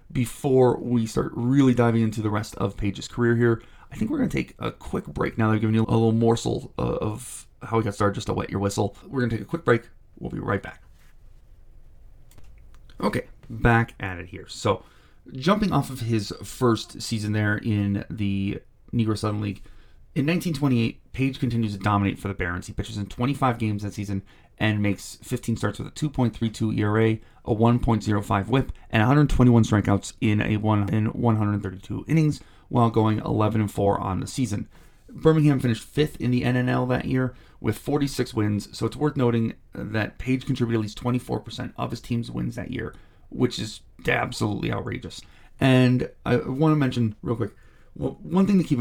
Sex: male